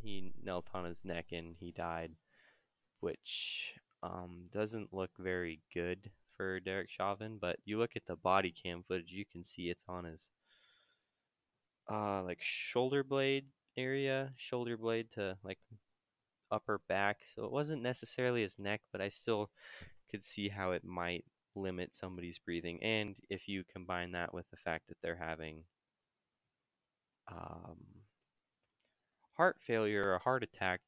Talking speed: 150 wpm